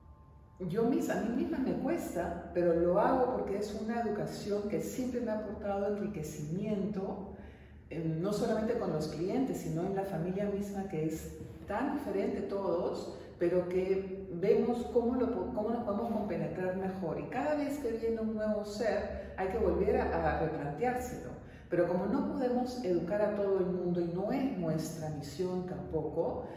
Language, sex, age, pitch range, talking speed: Spanish, female, 40-59, 165-220 Hz, 170 wpm